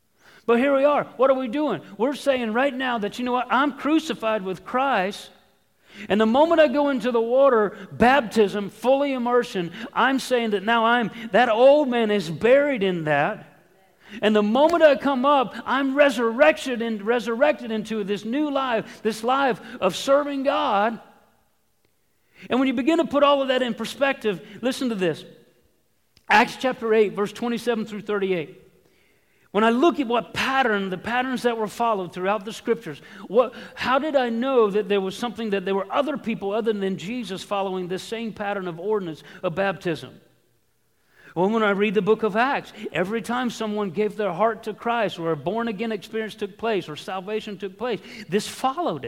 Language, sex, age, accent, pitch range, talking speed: English, male, 50-69, American, 200-255 Hz, 185 wpm